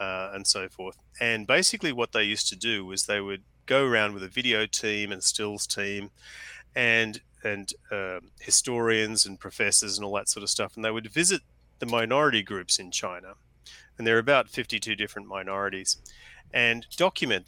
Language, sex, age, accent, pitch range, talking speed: English, male, 30-49, Australian, 100-125 Hz, 180 wpm